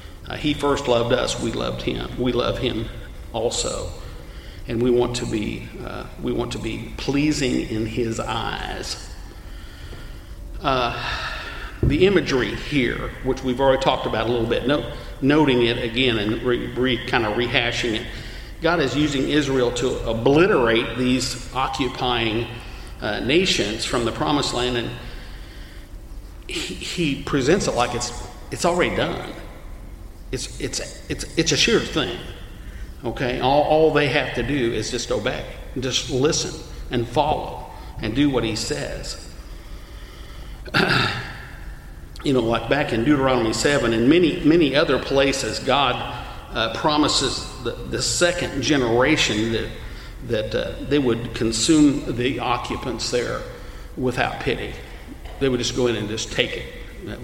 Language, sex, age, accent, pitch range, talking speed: English, male, 50-69, American, 110-130 Hz, 145 wpm